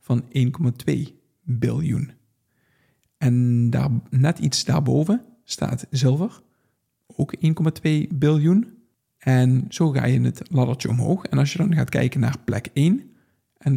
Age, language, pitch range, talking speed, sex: 50-69, Dutch, 125-155 Hz, 130 wpm, male